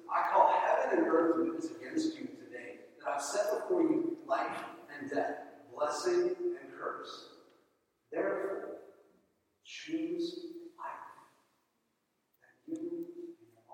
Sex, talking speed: male, 120 wpm